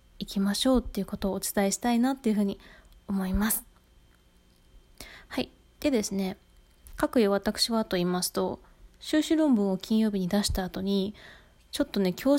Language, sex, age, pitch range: Japanese, female, 20-39, 195-255 Hz